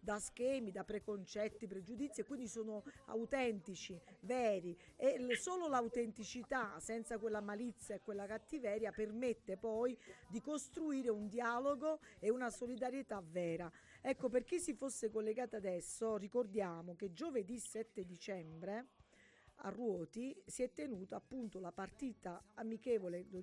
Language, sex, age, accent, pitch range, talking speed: Italian, female, 40-59, native, 205-250 Hz, 135 wpm